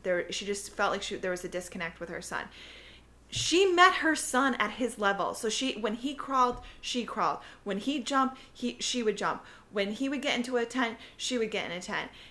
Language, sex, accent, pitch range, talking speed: English, female, American, 185-245 Hz, 230 wpm